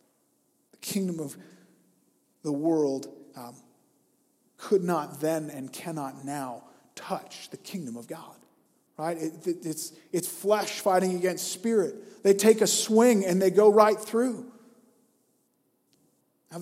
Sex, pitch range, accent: male, 175-205 Hz, American